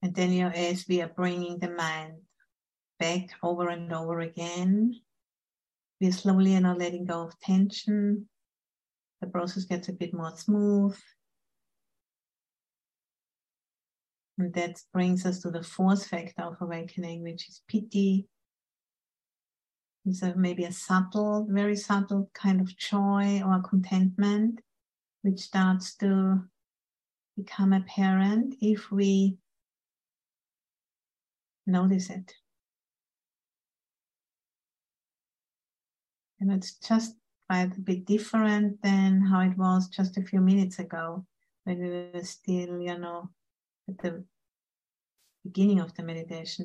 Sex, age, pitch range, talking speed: female, 60-79, 180-200 Hz, 120 wpm